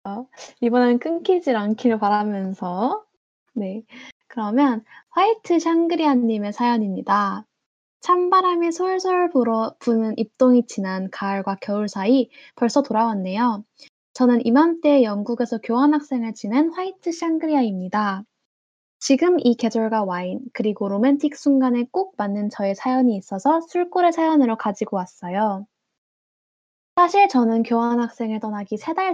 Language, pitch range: Korean, 210-285 Hz